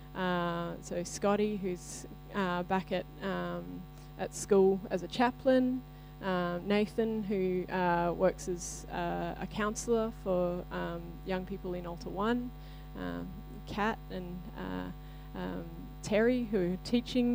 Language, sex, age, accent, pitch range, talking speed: English, female, 20-39, Australian, 175-210 Hz, 130 wpm